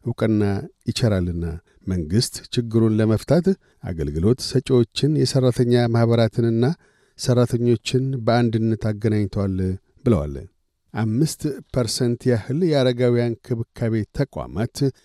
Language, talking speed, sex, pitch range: Amharic, 75 wpm, male, 115-135 Hz